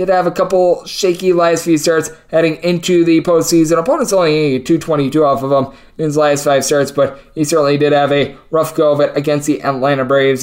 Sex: male